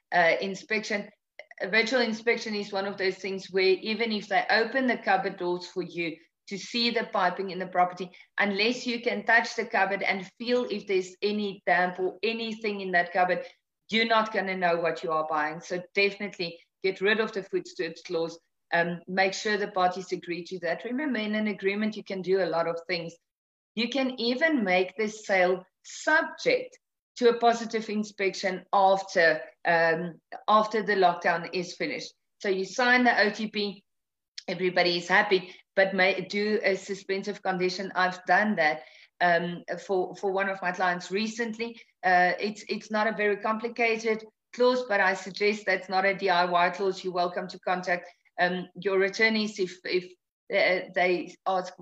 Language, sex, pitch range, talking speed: English, female, 180-215 Hz, 175 wpm